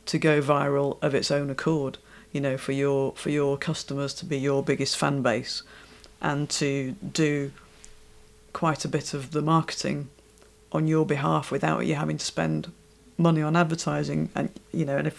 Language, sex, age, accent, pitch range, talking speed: English, female, 40-59, British, 145-165 Hz, 180 wpm